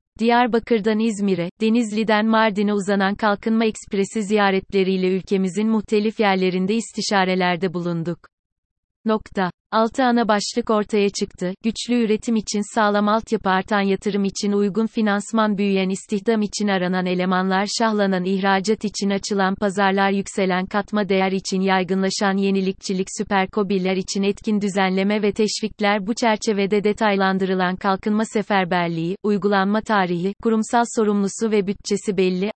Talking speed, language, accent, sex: 115 wpm, Turkish, native, female